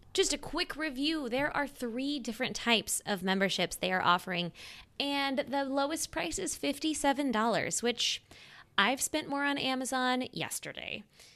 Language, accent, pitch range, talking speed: English, American, 190-250 Hz, 145 wpm